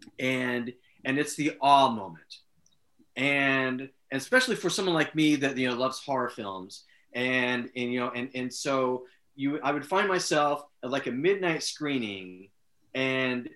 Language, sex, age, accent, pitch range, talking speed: English, male, 30-49, American, 130-170 Hz, 165 wpm